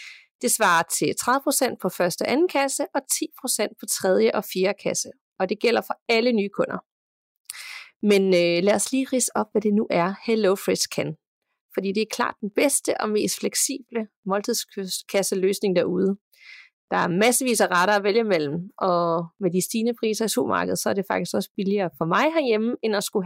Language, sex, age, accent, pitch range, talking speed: Danish, female, 30-49, native, 195-245 Hz, 190 wpm